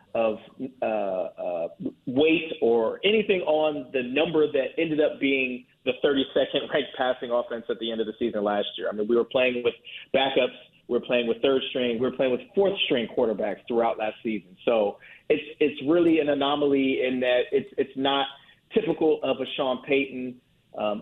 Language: English